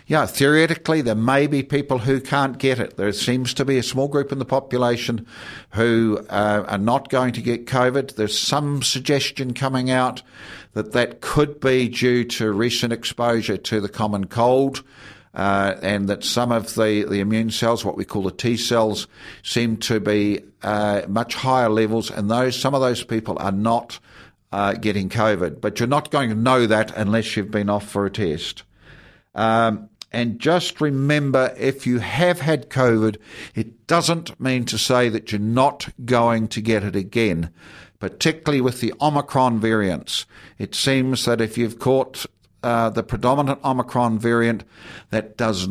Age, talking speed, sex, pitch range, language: 50-69, 170 wpm, male, 105-130 Hz, English